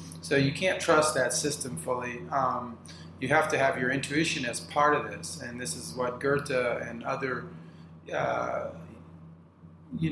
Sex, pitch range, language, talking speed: male, 85-140 Hz, English, 160 wpm